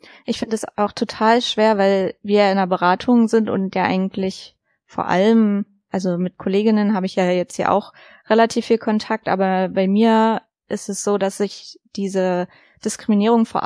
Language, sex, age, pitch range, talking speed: German, female, 20-39, 195-230 Hz, 175 wpm